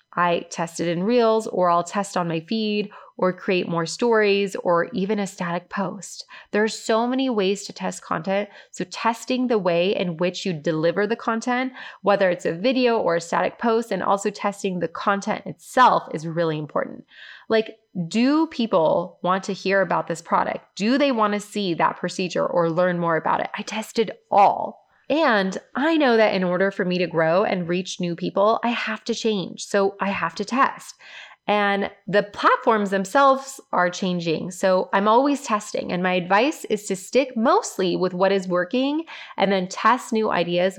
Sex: female